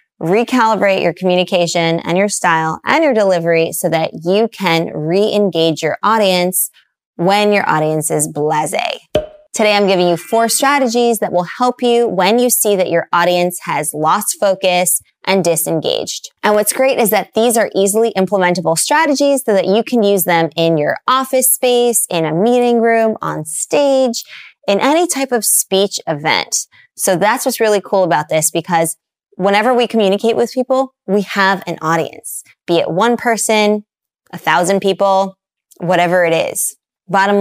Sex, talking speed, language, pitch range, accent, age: female, 165 wpm, English, 175-230 Hz, American, 20-39